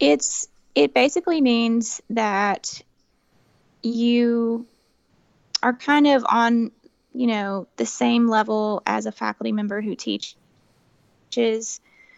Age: 20-39